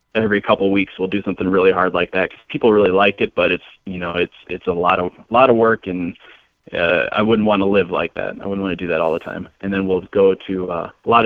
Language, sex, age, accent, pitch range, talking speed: English, male, 20-39, American, 90-100 Hz, 295 wpm